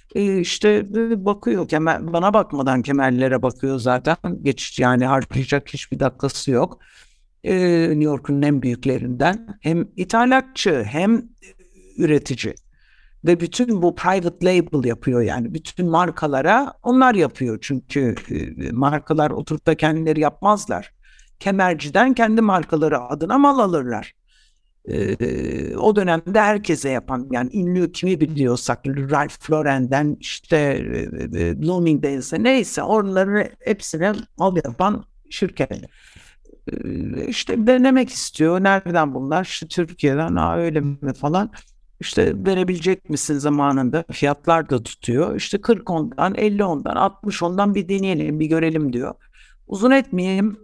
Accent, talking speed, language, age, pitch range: native, 115 wpm, Turkish, 60-79, 140-195 Hz